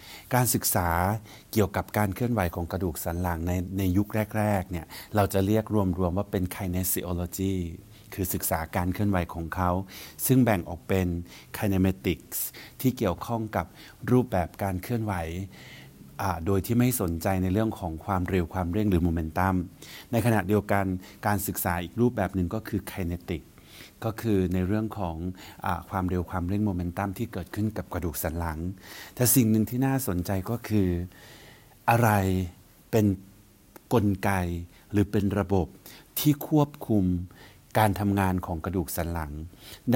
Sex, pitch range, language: male, 90-105 Hz, Thai